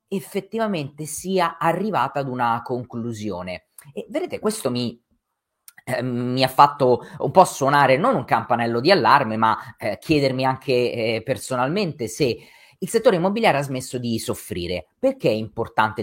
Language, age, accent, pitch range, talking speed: Italian, 30-49, native, 110-150 Hz, 145 wpm